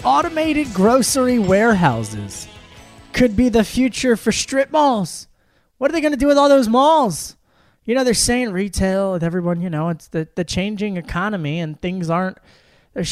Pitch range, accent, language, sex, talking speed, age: 160-205 Hz, American, English, male, 175 wpm, 20-39